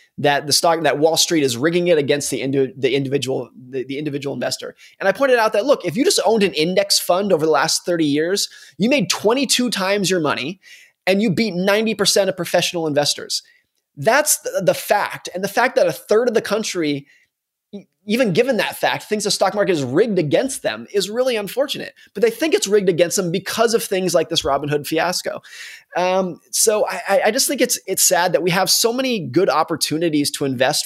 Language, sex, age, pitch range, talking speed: English, male, 20-39, 155-215 Hz, 215 wpm